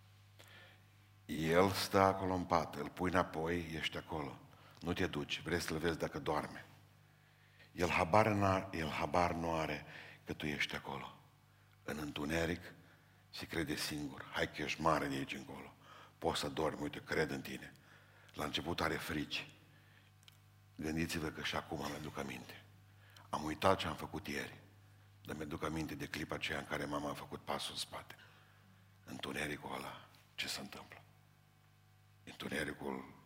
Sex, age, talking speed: male, 60-79, 155 wpm